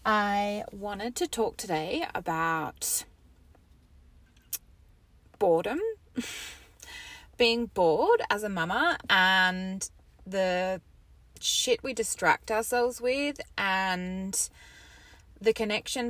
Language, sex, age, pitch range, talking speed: English, female, 20-39, 180-245 Hz, 80 wpm